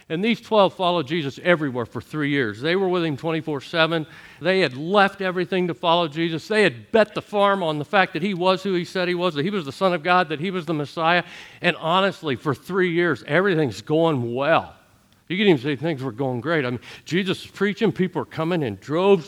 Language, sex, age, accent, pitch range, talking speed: English, male, 50-69, American, 130-185 Hz, 235 wpm